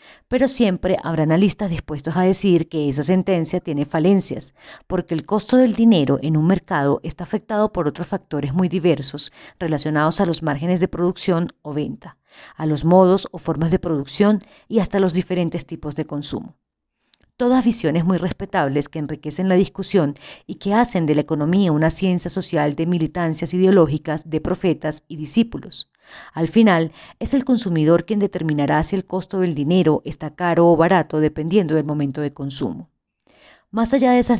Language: Spanish